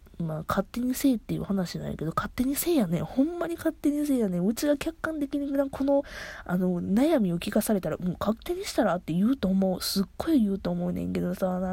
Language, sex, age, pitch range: Japanese, female, 20-39, 155-220 Hz